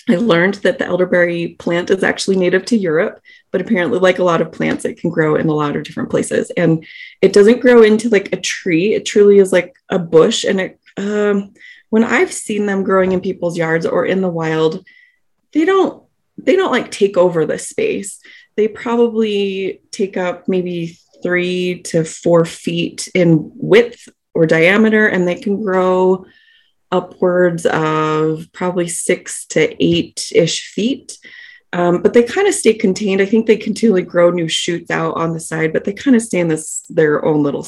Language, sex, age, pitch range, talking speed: English, female, 20-39, 170-225 Hz, 185 wpm